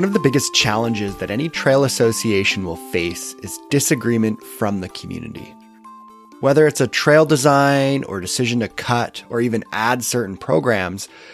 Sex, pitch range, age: male, 105-140 Hz, 30-49